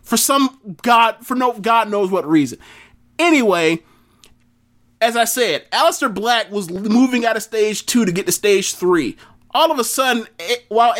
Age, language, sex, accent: 30-49, English, male, American